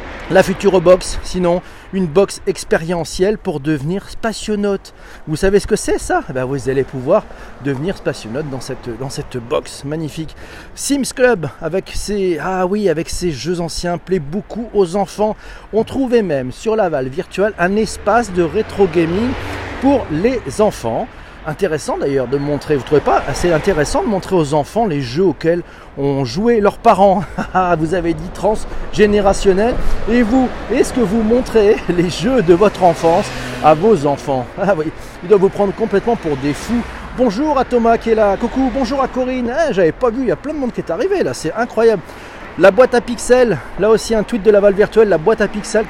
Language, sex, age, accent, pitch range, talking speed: French, male, 40-59, French, 160-225 Hz, 195 wpm